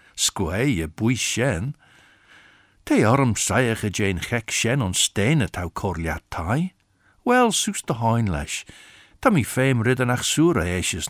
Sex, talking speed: male, 160 wpm